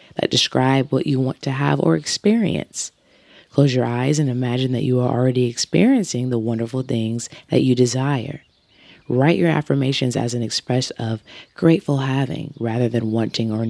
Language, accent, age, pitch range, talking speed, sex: English, American, 20-39, 120-140 Hz, 165 wpm, female